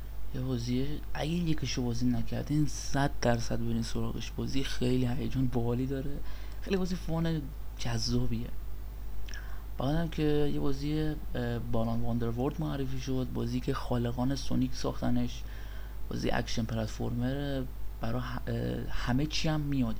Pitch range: 110-130 Hz